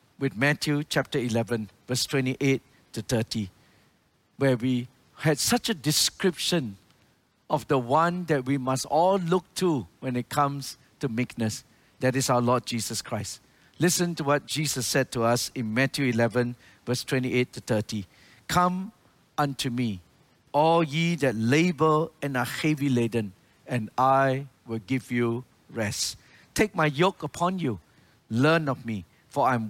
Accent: Malaysian